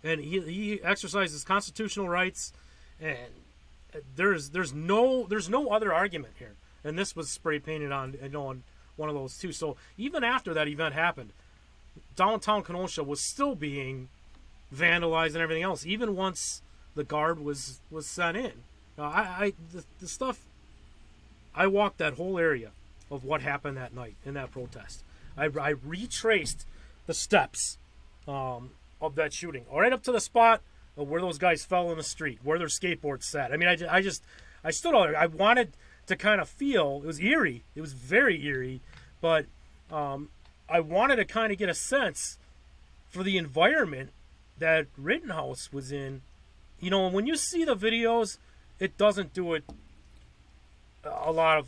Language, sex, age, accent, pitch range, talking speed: English, male, 30-49, American, 135-190 Hz, 175 wpm